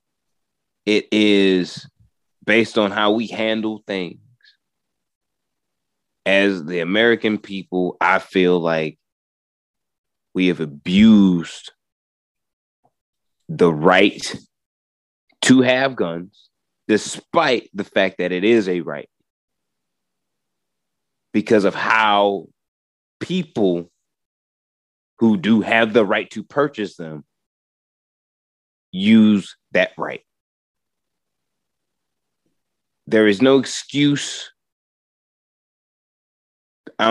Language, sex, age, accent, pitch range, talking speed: English, male, 30-49, American, 85-115 Hz, 80 wpm